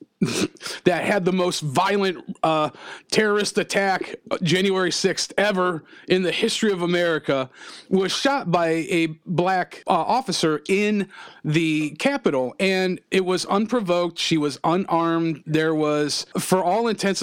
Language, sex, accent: English, male, American